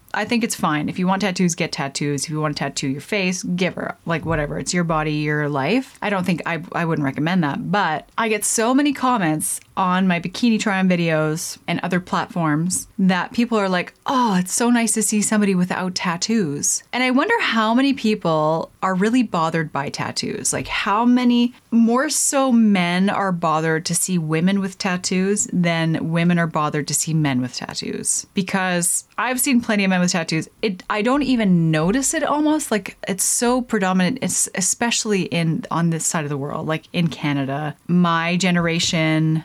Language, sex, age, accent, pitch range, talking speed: English, female, 30-49, American, 160-220 Hz, 195 wpm